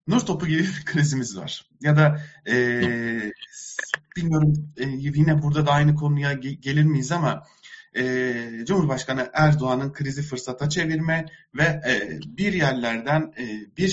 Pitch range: 125-155 Hz